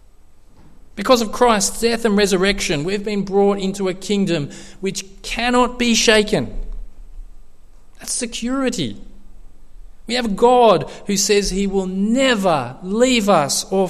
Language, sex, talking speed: English, male, 125 wpm